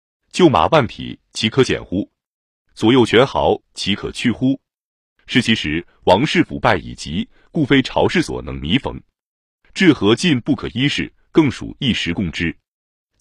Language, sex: Chinese, male